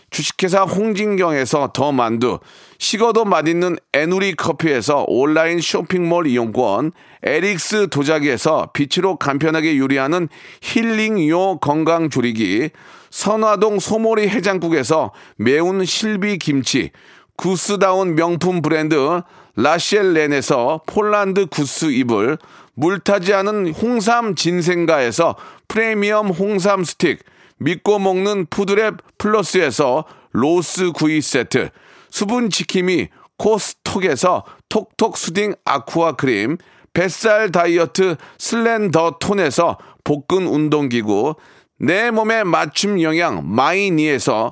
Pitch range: 160-205 Hz